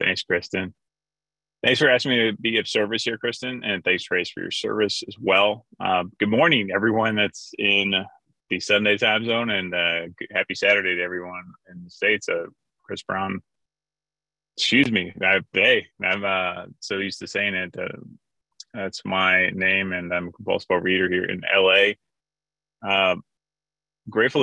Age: 20-39